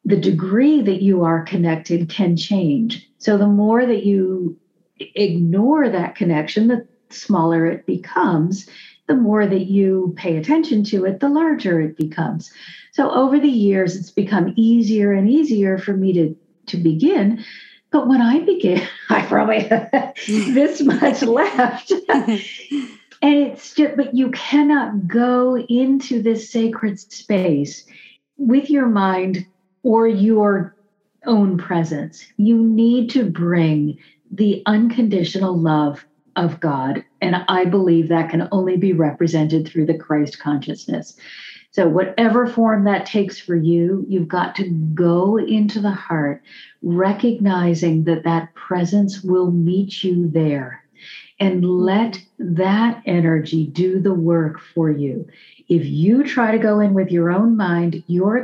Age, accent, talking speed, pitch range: 50-69, American, 140 wpm, 170-230 Hz